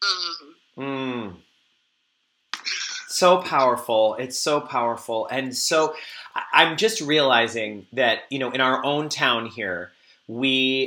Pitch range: 115-145 Hz